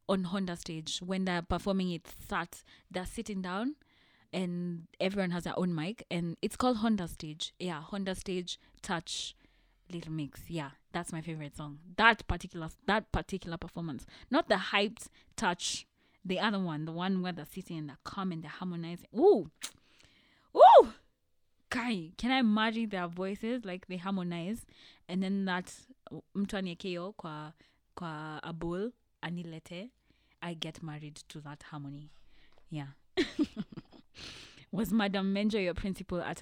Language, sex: English, female